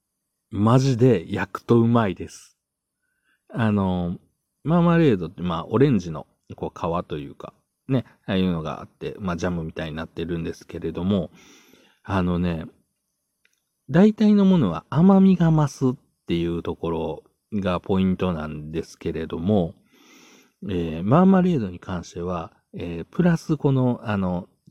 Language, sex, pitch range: Japanese, male, 90-135 Hz